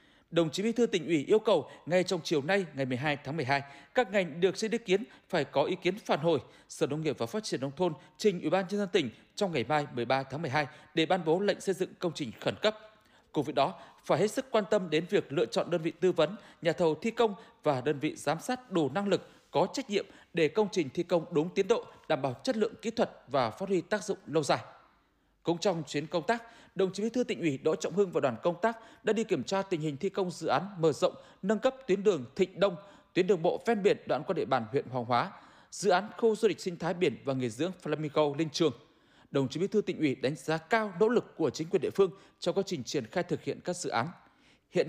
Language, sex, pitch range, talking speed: Vietnamese, male, 150-205 Hz, 265 wpm